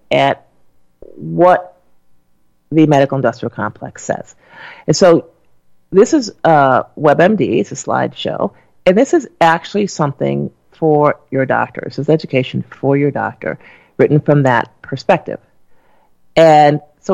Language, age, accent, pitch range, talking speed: English, 40-59, American, 130-180 Hz, 125 wpm